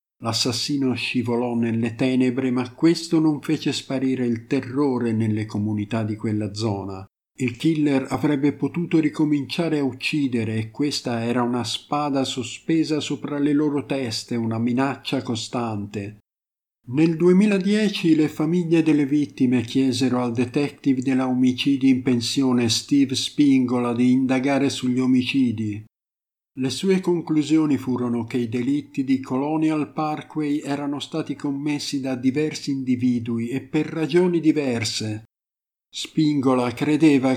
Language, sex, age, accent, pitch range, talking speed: Italian, male, 50-69, native, 125-150 Hz, 125 wpm